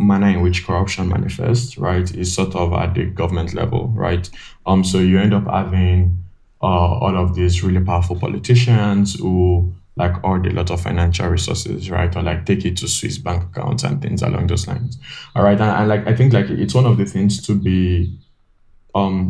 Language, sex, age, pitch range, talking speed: English, male, 20-39, 90-105 Hz, 205 wpm